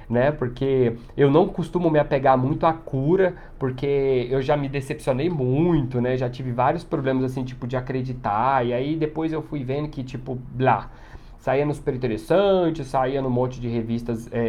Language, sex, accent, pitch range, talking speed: Portuguese, male, Brazilian, 125-160 Hz, 180 wpm